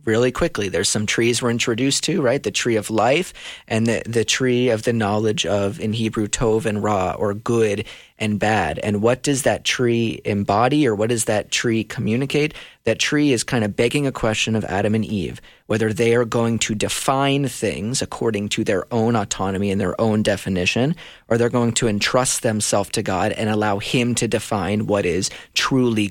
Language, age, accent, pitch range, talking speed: English, 30-49, American, 105-120 Hz, 200 wpm